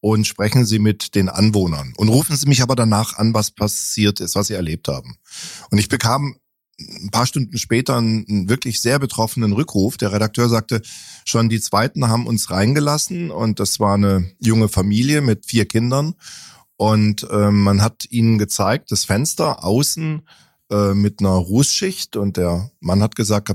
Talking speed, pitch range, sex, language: 170 wpm, 100-125 Hz, male, German